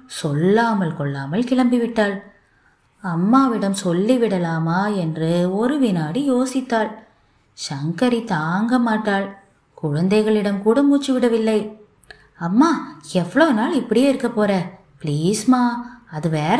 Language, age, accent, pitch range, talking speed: Tamil, 20-39, native, 175-250 Hz, 95 wpm